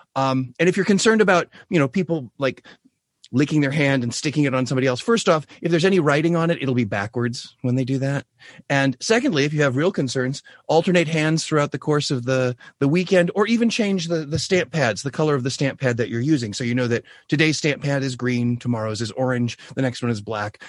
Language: English